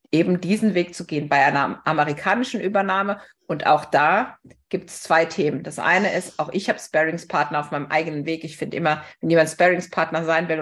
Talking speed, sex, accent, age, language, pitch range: 200 wpm, female, German, 50-69, German, 150-180 Hz